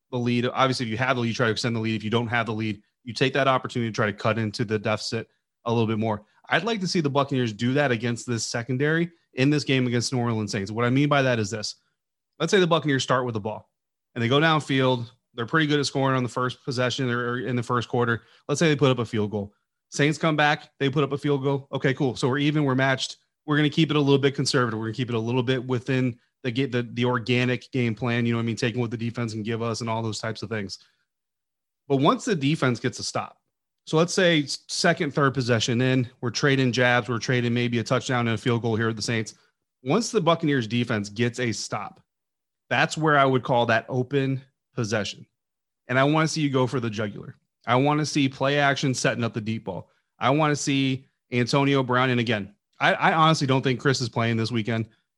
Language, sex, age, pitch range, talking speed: English, male, 30-49, 115-140 Hz, 255 wpm